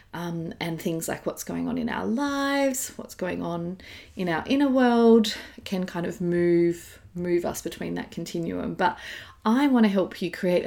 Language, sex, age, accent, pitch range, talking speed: English, female, 30-49, Australian, 175-225 Hz, 185 wpm